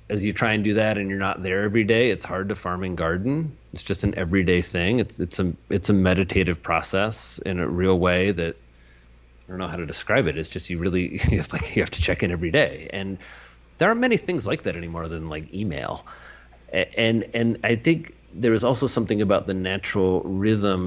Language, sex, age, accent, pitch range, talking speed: English, male, 30-49, American, 85-110 Hz, 220 wpm